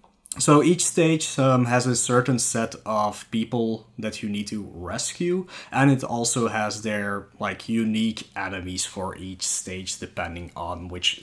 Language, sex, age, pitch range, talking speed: English, male, 20-39, 100-125 Hz, 155 wpm